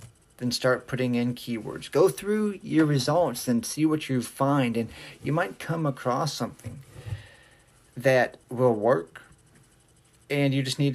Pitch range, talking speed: 115-135 Hz, 140 wpm